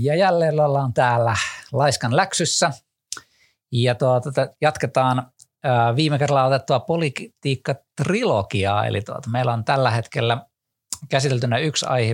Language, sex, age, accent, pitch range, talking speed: Finnish, male, 50-69, native, 110-135 Hz, 110 wpm